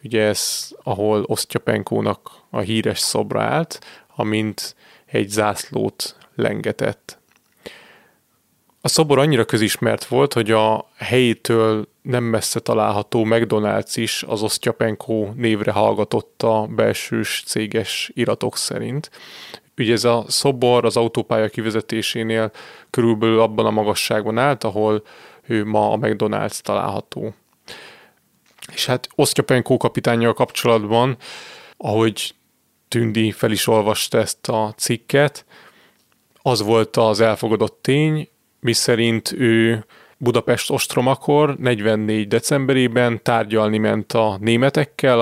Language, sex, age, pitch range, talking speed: Hungarian, male, 30-49, 110-125 Hz, 105 wpm